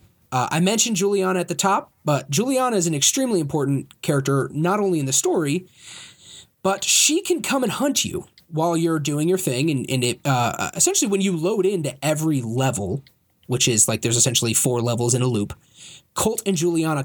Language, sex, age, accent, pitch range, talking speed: English, male, 20-39, American, 125-180 Hz, 195 wpm